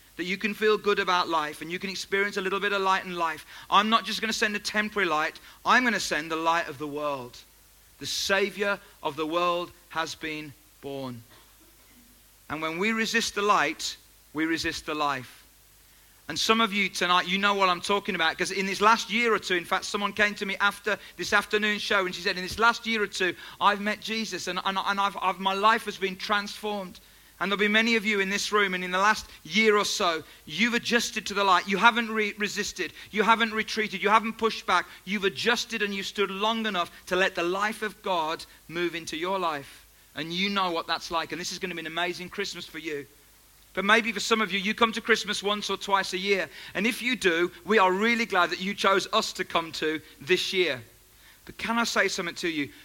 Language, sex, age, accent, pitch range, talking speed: English, male, 40-59, British, 170-210 Hz, 235 wpm